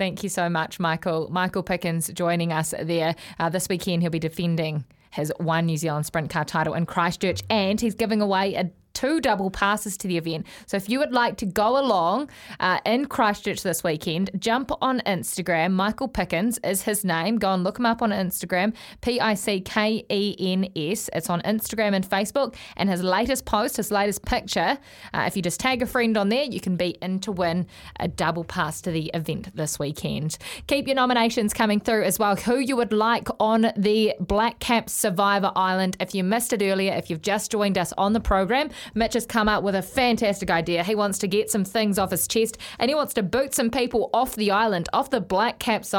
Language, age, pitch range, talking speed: English, 20-39, 180-225 Hz, 210 wpm